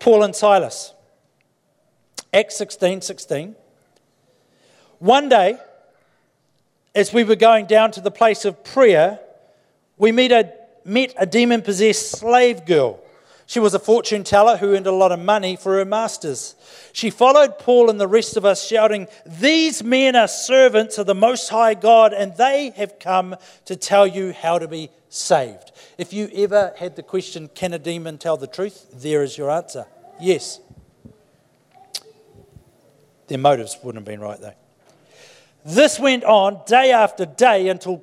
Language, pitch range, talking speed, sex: English, 190-250 Hz, 160 wpm, male